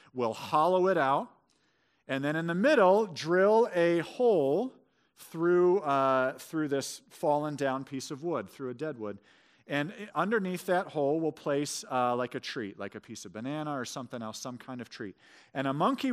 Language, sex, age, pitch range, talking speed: English, male, 40-59, 140-185 Hz, 185 wpm